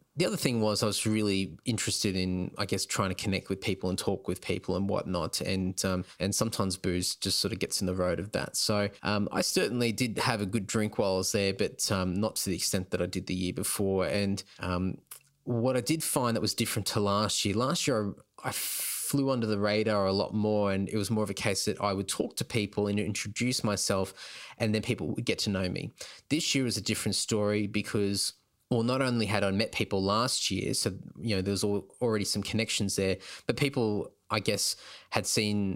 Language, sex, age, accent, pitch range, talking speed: English, male, 20-39, Australian, 95-115 Hz, 235 wpm